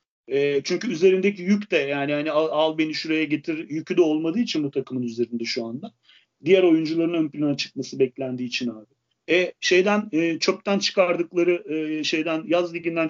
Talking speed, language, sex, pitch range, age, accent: 175 wpm, Turkish, male, 145-205 Hz, 40-59, native